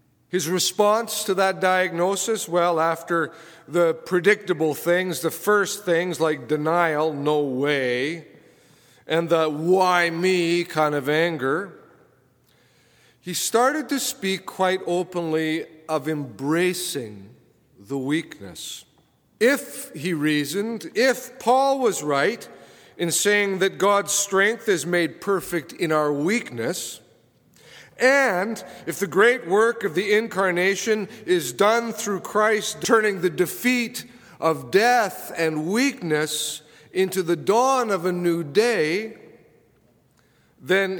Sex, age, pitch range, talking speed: male, 50-69, 155-205 Hz, 115 wpm